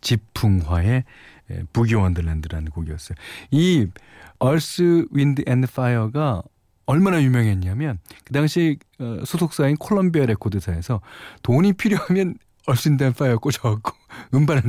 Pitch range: 95-145 Hz